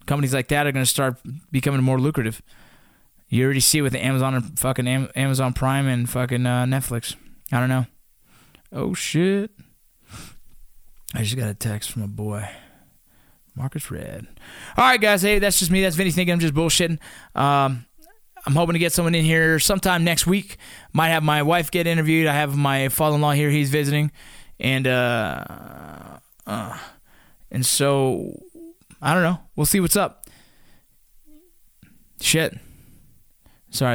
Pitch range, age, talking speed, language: 135-170 Hz, 20-39, 160 wpm, English